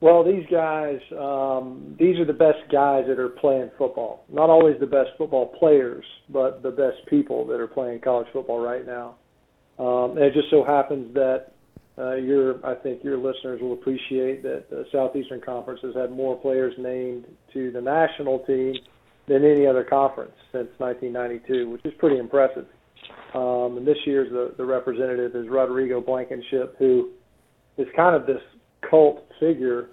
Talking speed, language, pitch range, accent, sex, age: 170 wpm, English, 125-140 Hz, American, male, 40-59